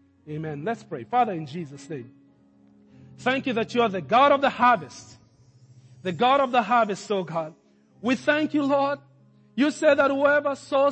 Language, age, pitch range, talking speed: English, 40-59, 235-295 Hz, 180 wpm